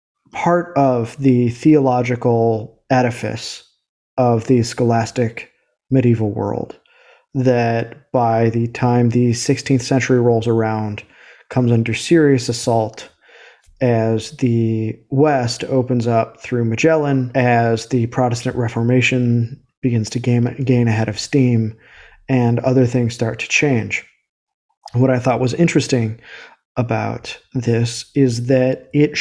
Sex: male